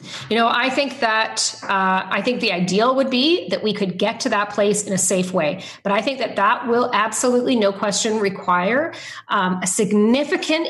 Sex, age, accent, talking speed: female, 40-59, American, 200 wpm